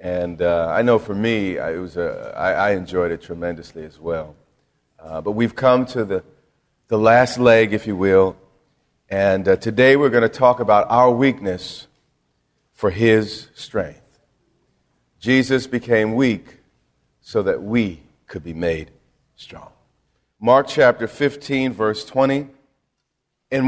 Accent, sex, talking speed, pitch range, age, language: American, male, 135 wpm, 110-140 Hz, 40-59, English